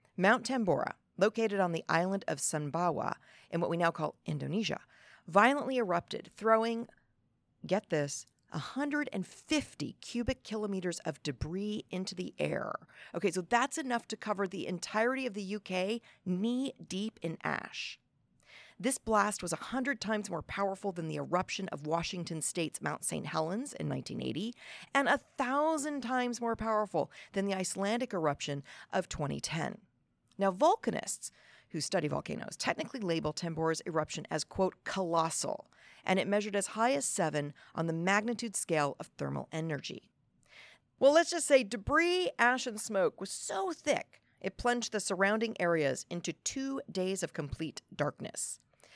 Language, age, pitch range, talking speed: English, 40-59, 165-235 Hz, 145 wpm